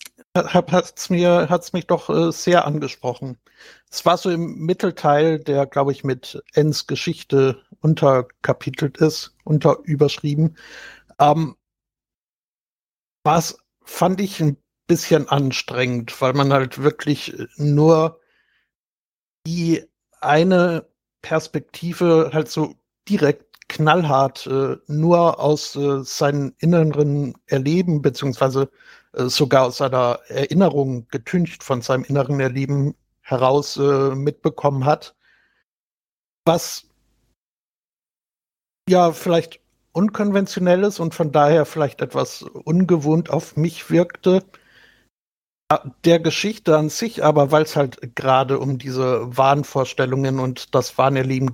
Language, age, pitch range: German, 60-79, 135-165 Hz